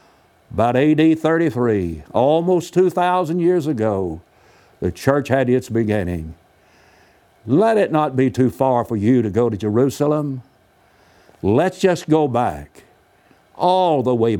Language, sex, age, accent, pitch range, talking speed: English, male, 60-79, American, 115-165 Hz, 130 wpm